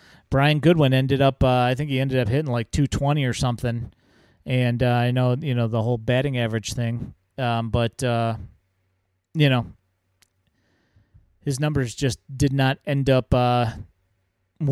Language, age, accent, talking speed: English, 30-49, American, 160 wpm